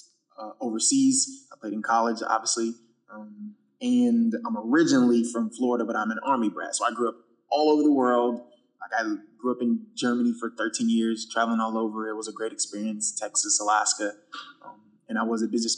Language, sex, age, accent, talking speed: English, male, 20-39, American, 195 wpm